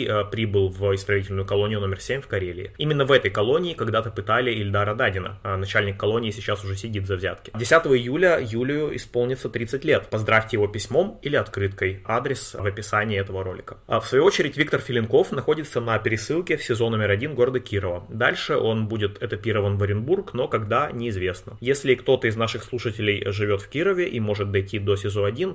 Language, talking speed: Russian, 185 wpm